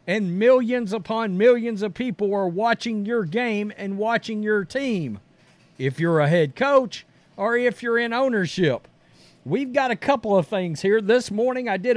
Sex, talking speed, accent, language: male, 175 wpm, American, English